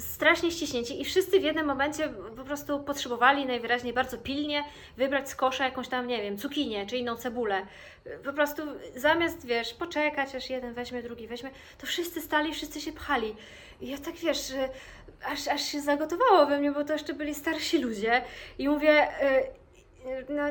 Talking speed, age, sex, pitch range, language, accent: 175 wpm, 20-39, female, 235-295 Hz, Polish, native